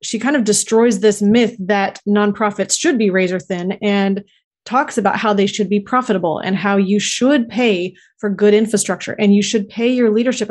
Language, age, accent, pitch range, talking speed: English, 20-39, American, 190-215 Hz, 195 wpm